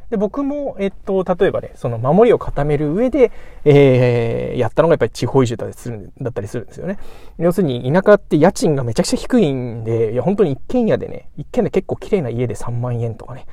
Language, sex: Japanese, male